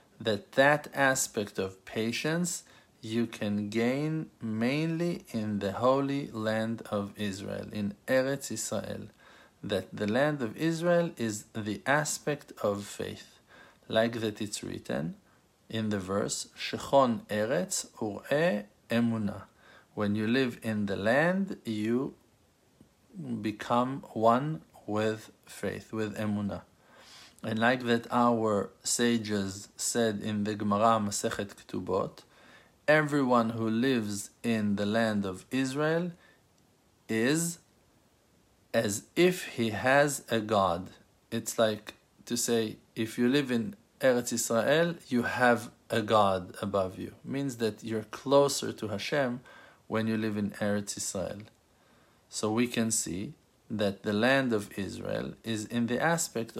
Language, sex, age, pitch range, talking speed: English, male, 50-69, 105-130 Hz, 125 wpm